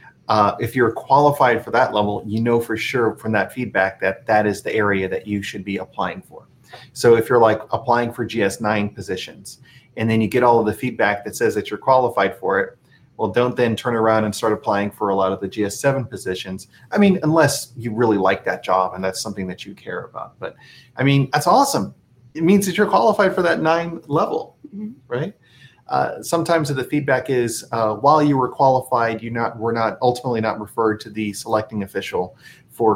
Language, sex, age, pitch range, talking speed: English, male, 30-49, 105-135 Hz, 210 wpm